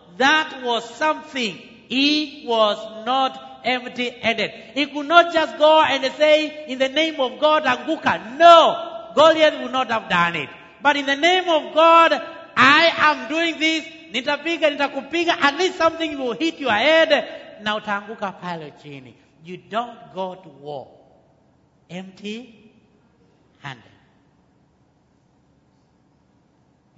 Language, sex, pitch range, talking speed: English, male, 180-290 Hz, 125 wpm